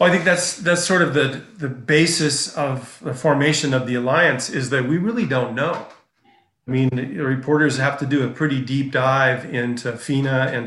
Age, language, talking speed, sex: 40-59, English, 195 wpm, male